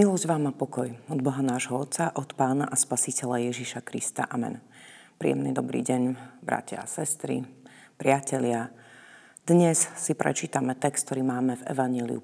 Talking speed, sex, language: 145 wpm, female, Slovak